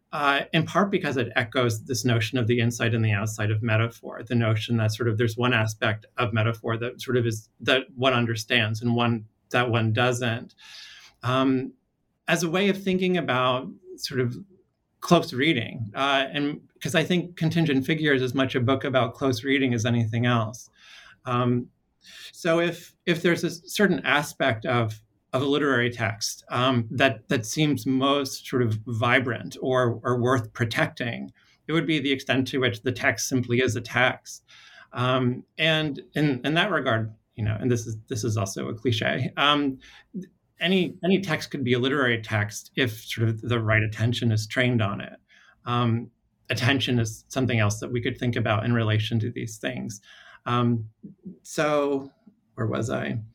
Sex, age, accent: male, 30-49, American